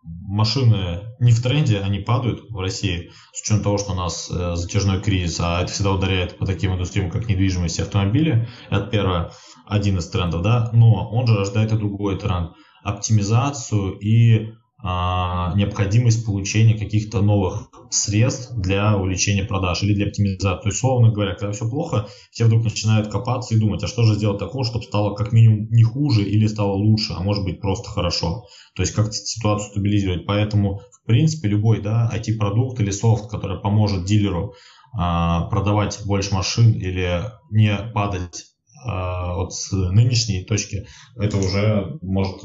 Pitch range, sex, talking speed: 95-110 Hz, male, 160 wpm